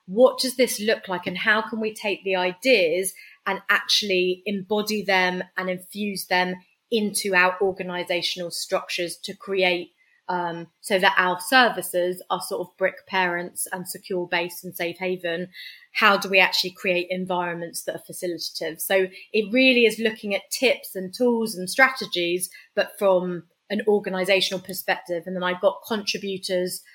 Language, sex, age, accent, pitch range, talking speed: English, female, 20-39, British, 175-200 Hz, 160 wpm